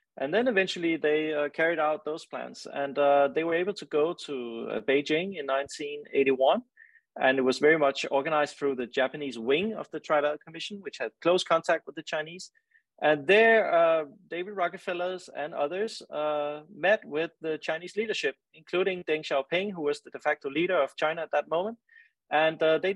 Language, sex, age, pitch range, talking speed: English, male, 30-49, 140-175 Hz, 185 wpm